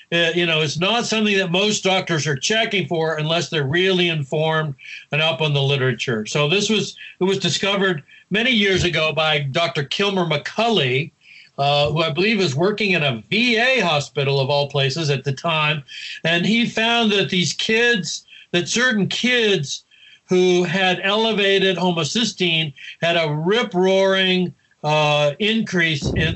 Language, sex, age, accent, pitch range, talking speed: English, male, 60-79, American, 155-205 Hz, 160 wpm